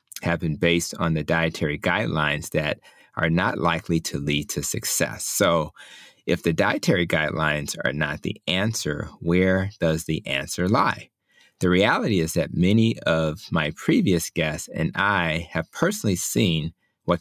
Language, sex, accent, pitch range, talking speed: English, male, American, 80-95 Hz, 155 wpm